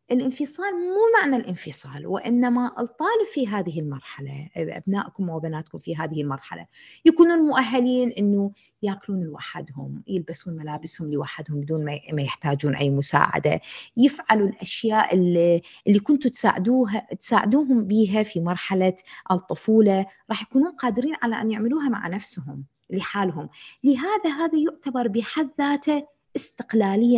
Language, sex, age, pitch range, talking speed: Arabic, female, 20-39, 180-265 Hz, 115 wpm